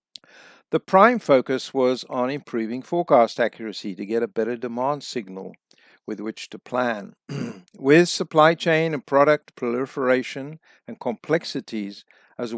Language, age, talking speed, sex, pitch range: English, 60-79, 130 wpm, male, 110-135 Hz